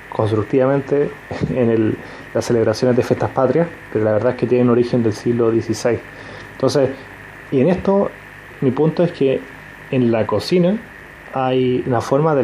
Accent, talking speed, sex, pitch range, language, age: Argentinian, 155 wpm, male, 115-130 Hz, Spanish, 30-49